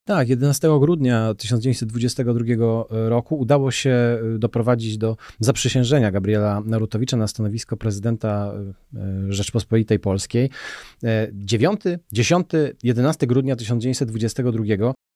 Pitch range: 115-130 Hz